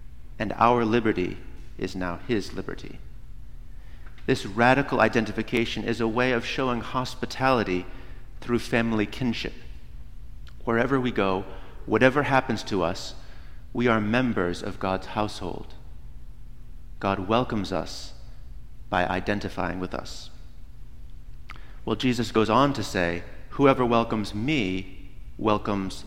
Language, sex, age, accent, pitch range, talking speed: English, male, 30-49, American, 80-120 Hz, 115 wpm